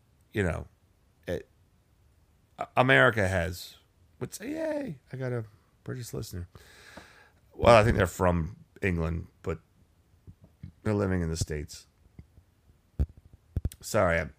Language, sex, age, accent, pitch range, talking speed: English, male, 30-49, American, 85-105 Hz, 110 wpm